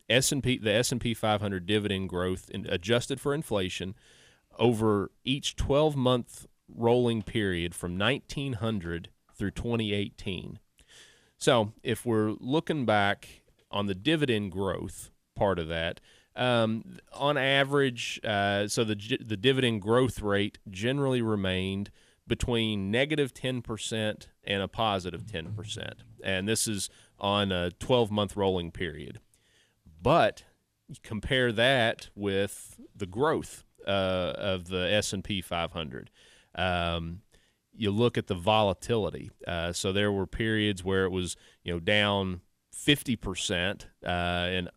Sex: male